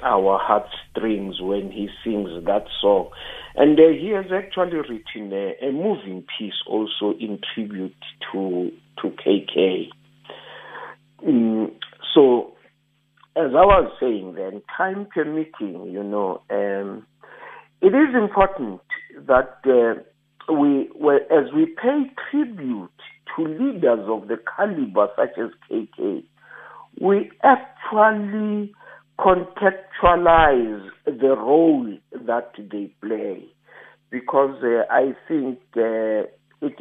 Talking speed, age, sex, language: 110 wpm, 50-69, male, English